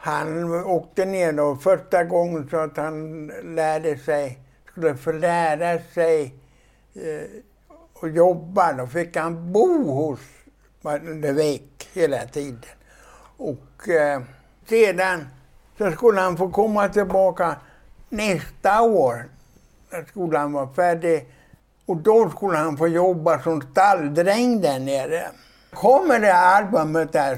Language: Swedish